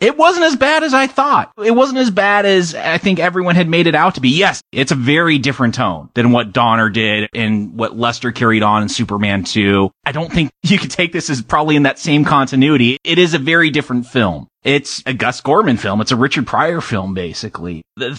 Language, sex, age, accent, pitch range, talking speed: English, male, 30-49, American, 115-170 Hz, 230 wpm